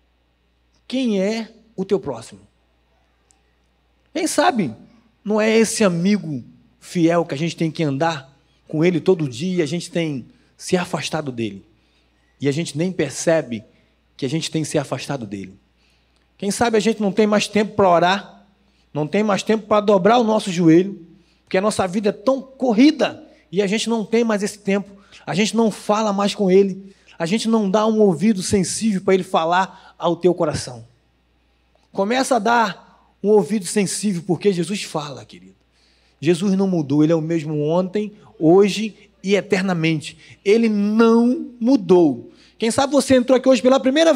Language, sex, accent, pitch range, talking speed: Portuguese, male, Brazilian, 150-215 Hz, 175 wpm